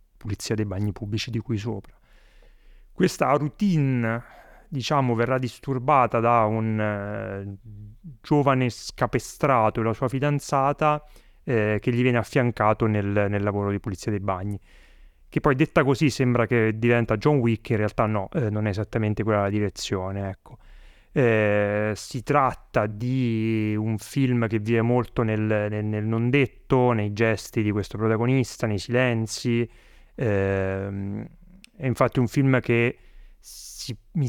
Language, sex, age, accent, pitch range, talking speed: Italian, male, 30-49, native, 105-130 Hz, 145 wpm